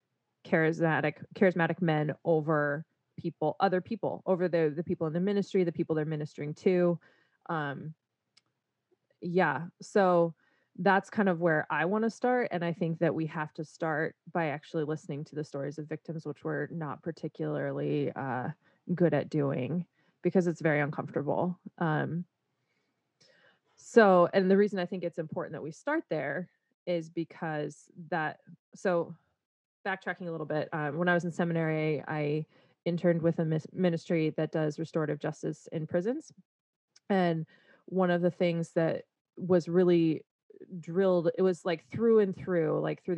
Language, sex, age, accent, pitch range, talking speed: English, female, 20-39, American, 155-180 Hz, 155 wpm